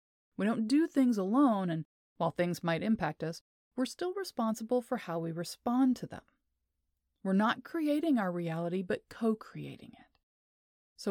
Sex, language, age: female, English, 30-49